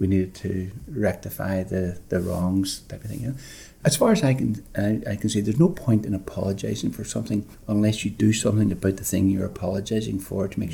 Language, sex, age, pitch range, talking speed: English, male, 60-79, 95-130 Hz, 210 wpm